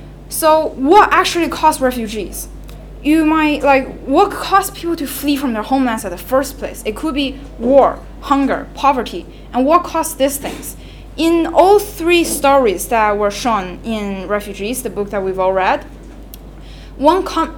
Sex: female